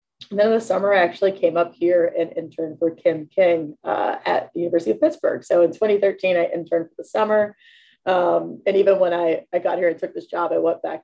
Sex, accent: female, American